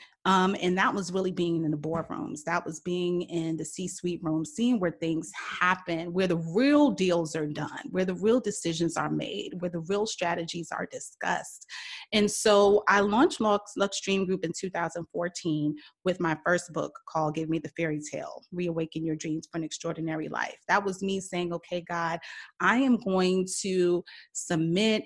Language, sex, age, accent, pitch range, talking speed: English, female, 30-49, American, 165-200 Hz, 180 wpm